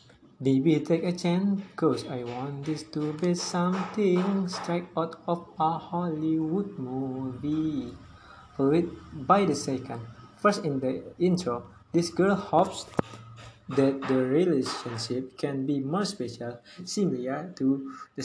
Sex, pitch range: male, 130-170 Hz